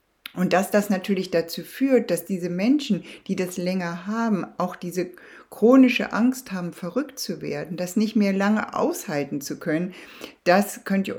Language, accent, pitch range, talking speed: German, German, 165-205 Hz, 165 wpm